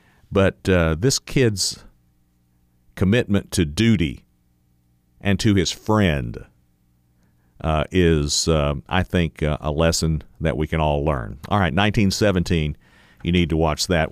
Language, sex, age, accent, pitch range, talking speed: English, male, 50-69, American, 70-90 Hz, 135 wpm